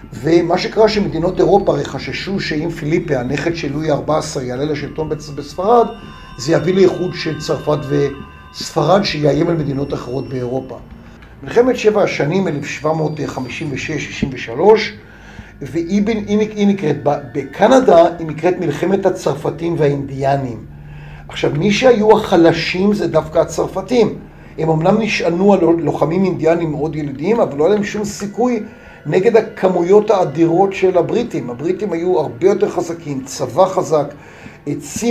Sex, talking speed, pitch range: male, 120 wpm, 145-180 Hz